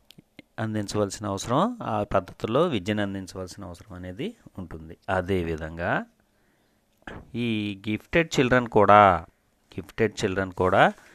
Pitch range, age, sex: 95-115 Hz, 30-49, male